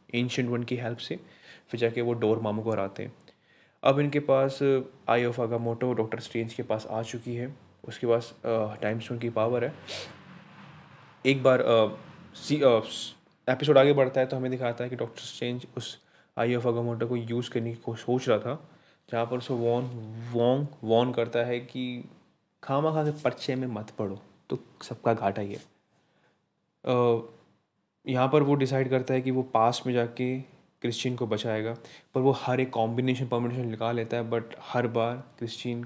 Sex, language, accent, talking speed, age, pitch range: male, Hindi, native, 180 wpm, 20-39, 115-130 Hz